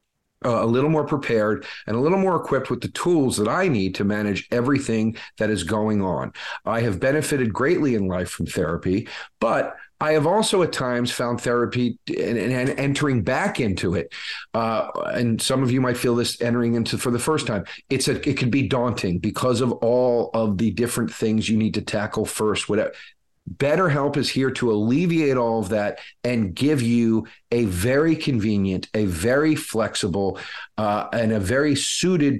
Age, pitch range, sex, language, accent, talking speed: 40-59, 110-130 Hz, male, English, American, 185 wpm